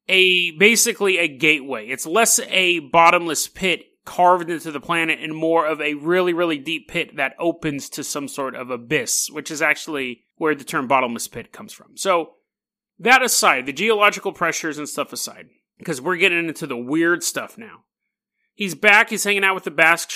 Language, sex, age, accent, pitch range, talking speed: English, male, 30-49, American, 155-210 Hz, 190 wpm